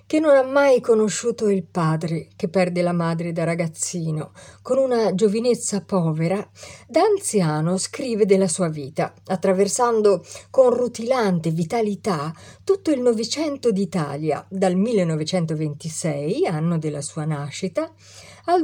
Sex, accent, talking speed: female, native, 120 wpm